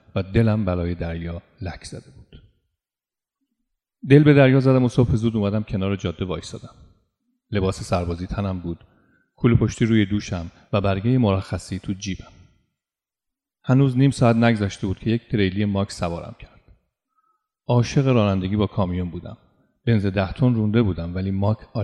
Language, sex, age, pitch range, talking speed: Persian, male, 40-59, 95-115 Hz, 150 wpm